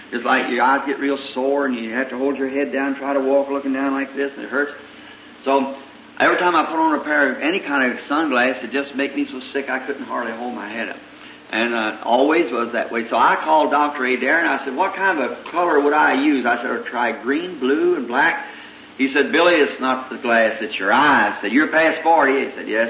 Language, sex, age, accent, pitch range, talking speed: English, male, 50-69, American, 125-145 Hz, 265 wpm